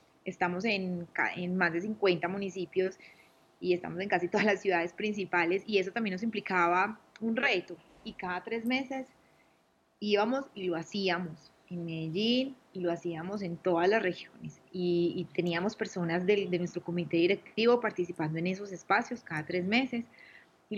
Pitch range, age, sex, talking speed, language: 180-215 Hz, 20-39, female, 160 wpm, Spanish